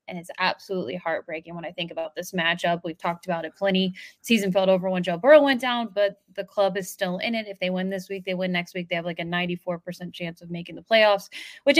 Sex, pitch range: female, 185-230 Hz